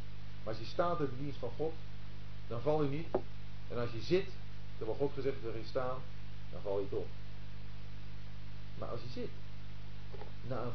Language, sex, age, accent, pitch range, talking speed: Dutch, male, 50-69, Dutch, 100-150 Hz, 185 wpm